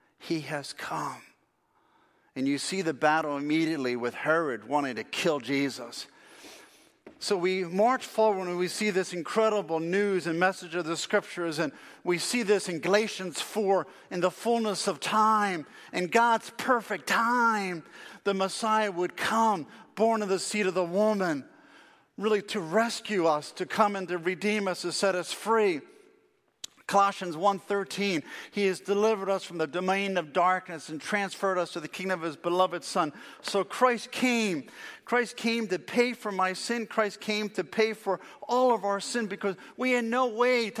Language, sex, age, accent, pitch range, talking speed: English, male, 50-69, American, 180-225 Hz, 170 wpm